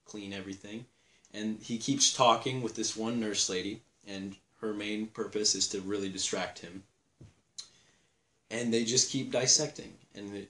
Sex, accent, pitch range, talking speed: male, American, 100-115 Hz, 150 wpm